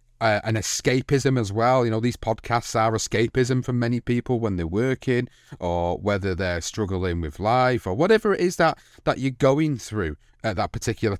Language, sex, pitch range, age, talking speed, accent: English, male, 100-130 Hz, 30-49, 190 wpm, British